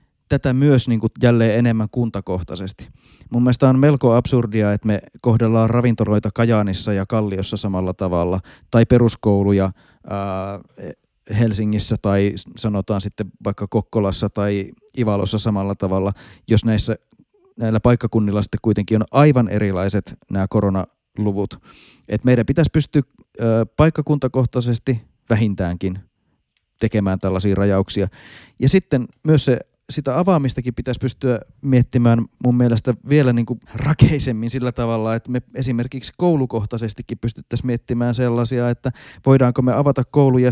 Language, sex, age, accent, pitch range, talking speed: Finnish, male, 30-49, native, 105-125 Hz, 115 wpm